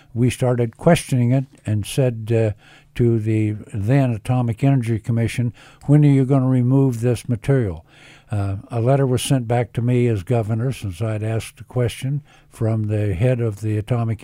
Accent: American